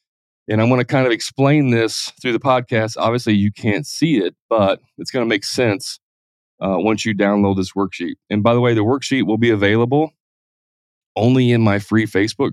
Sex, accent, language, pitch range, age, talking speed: male, American, English, 100-120 Hz, 30-49, 200 wpm